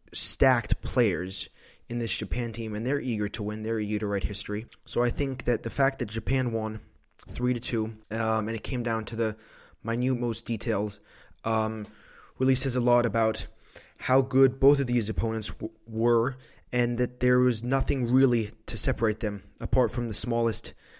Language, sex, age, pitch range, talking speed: English, male, 20-39, 110-130 Hz, 175 wpm